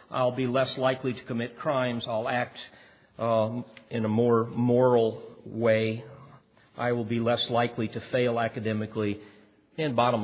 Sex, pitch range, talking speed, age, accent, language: male, 105-135 Hz, 145 wpm, 50-69, American, English